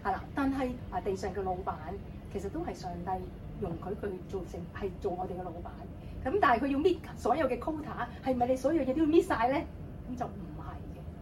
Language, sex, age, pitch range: Chinese, female, 30-49, 245-350 Hz